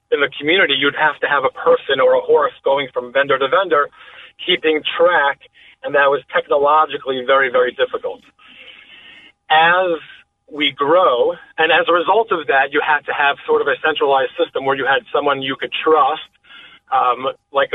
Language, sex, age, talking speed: English, male, 30-49, 180 wpm